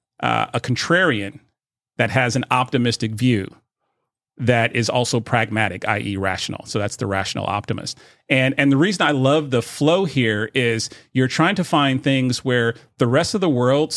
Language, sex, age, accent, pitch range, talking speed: English, male, 40-59, American, 115-140 Hz, 170 wpm